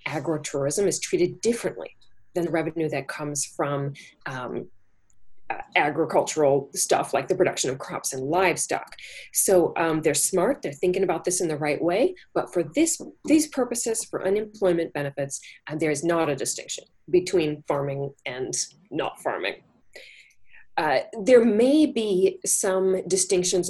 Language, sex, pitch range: English, female, 155-225 Hz